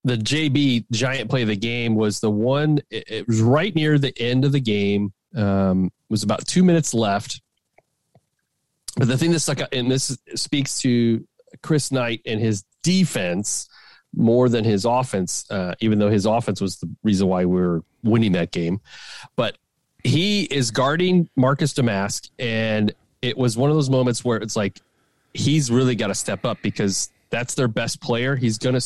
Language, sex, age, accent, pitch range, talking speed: English, male, 30-49, American, 110-145 Hz, 180 wpm